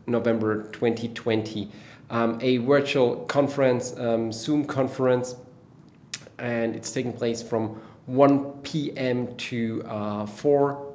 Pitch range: 115-135 Hz